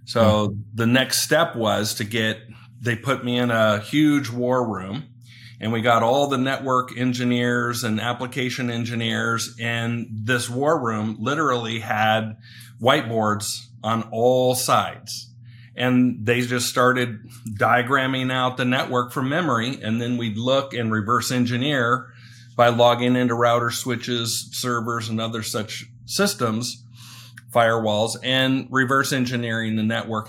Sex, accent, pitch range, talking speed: male, American, 115-125 Hz, 135 wpm